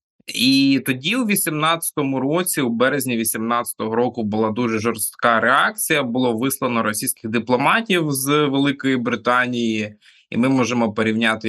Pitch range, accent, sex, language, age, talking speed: 115-150 Hz, native, male, Ukrainian, 20-39, 125 wpm